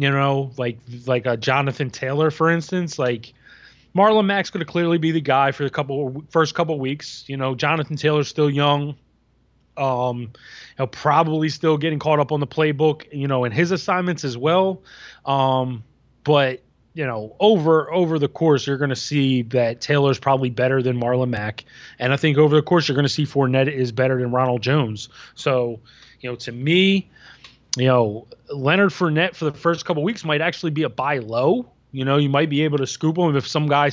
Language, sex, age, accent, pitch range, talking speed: English, male, 20-39, American, 130-160 Hz, 200 wpm